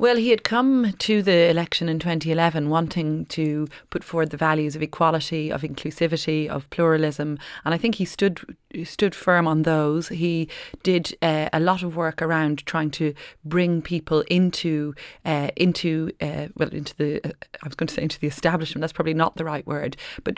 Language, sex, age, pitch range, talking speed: English, female, 30-49, 150-170 Hz, 195 wpm